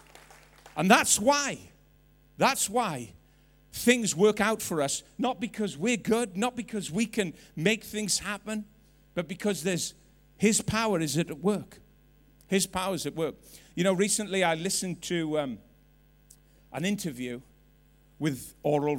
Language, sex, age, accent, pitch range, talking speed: English, male, 50-69, British, 150-200 Hz, 140 wpm